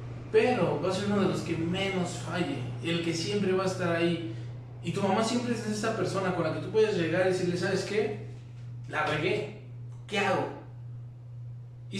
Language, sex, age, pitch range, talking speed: Spanish, male, 20-39, 120-185 Hz, 195 wpm